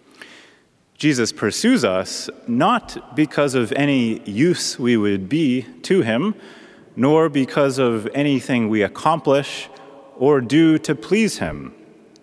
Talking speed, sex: 120 wpm, male